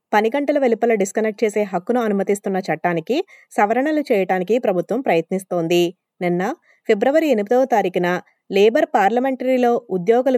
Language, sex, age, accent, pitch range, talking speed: Telugu, female, 20-39, native, 185-245 Hz, 110 wpm